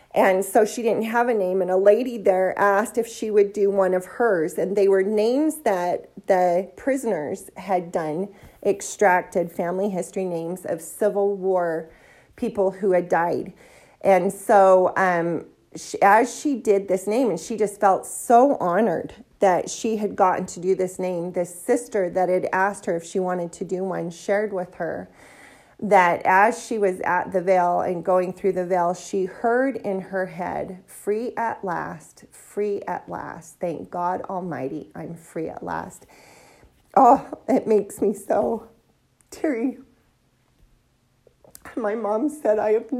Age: 40-59